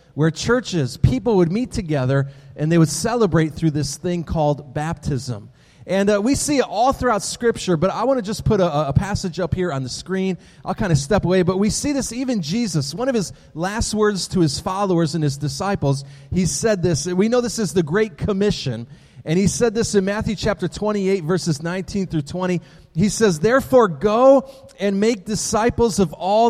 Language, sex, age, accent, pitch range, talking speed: English, male, 30-49, American, 160-220 Hz, 205 wpm